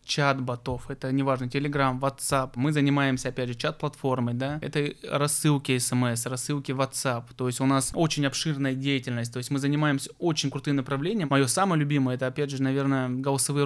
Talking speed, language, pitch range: 170 wpm, Russian, 135-155 Hz